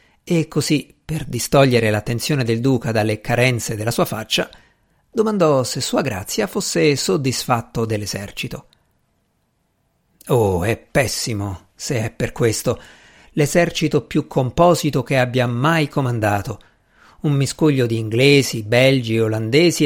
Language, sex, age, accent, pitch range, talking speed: Italian, male, 50-69, native, 115-155 Hz, 120 wpm